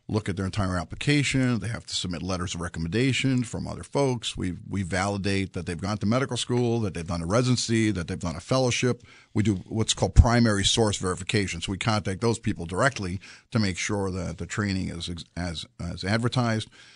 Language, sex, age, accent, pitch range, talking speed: English, male, 50-69, American, 100-130 Hz, 200 wpm